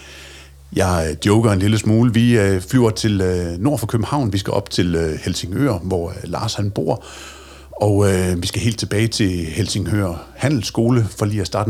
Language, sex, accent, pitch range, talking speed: Danish, male, native, 85-110 Hz, 165 wpm